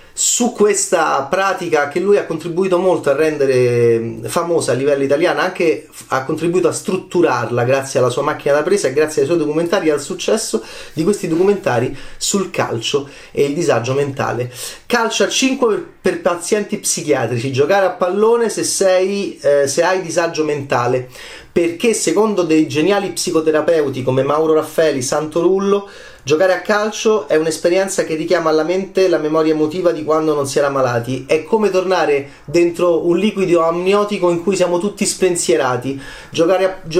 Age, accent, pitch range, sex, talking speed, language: 30-49, native, 155-195 Hz, male, 165 wpm, Italian